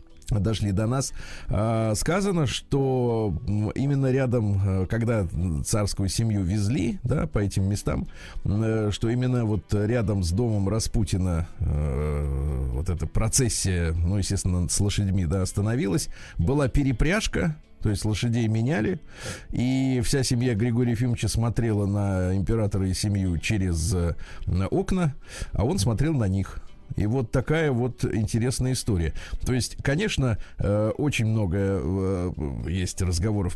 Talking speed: 120 wpm